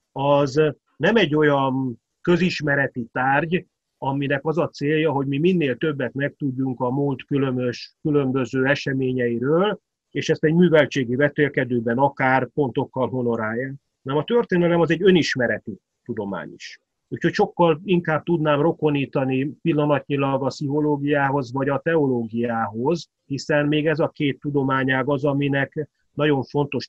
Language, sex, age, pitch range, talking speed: Hungarian, male, 30-49, 130-160 Hz, 125 wpm